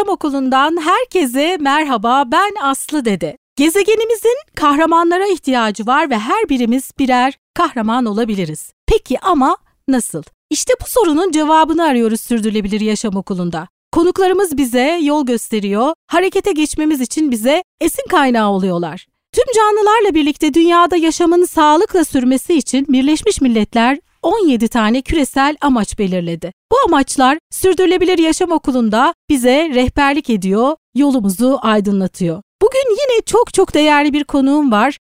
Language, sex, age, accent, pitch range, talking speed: Turkish, female, 40-59, native, 240-345 Hz, 125 wpm